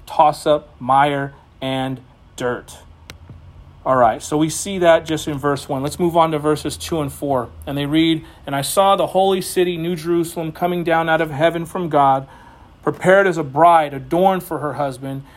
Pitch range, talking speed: 145-180 Hz, 185 wpm